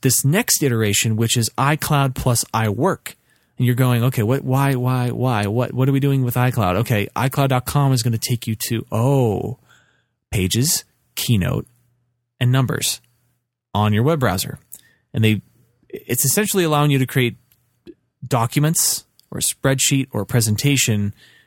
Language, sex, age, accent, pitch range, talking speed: English, male, 30-49, American, 115-135 Hz, 155 wpm